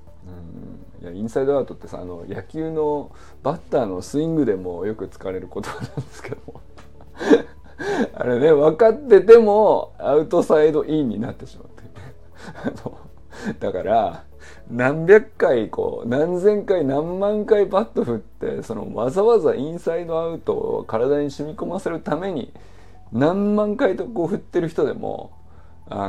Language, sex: Japanese, male